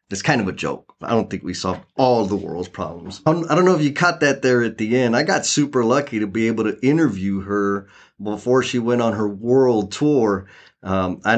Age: 30-49